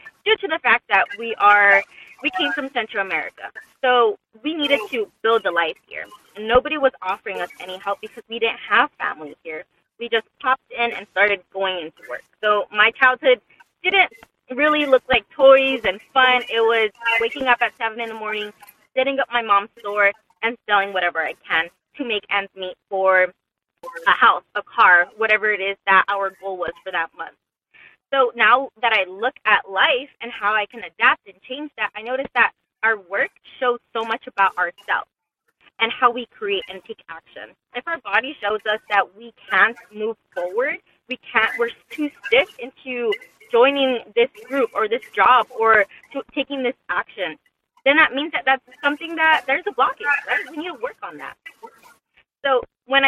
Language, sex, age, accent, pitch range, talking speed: English, female, 20-39, American, 205-275 Hz, 190 wpm